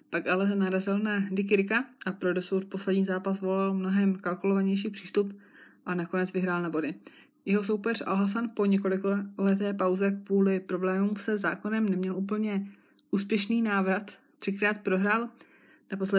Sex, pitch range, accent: female, 185-200 Hz, native